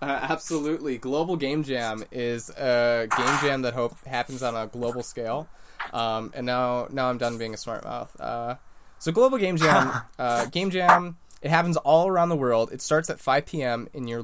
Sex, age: male, 20-39